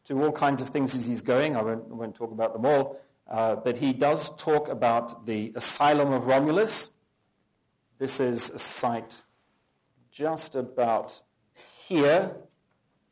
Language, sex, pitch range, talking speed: English, male, 110-140 Hz, 145 wpm